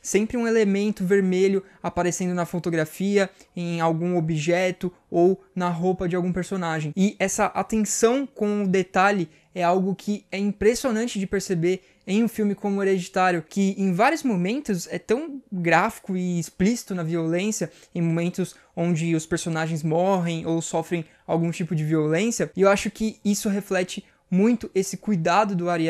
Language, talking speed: Portuguese, 160 wpm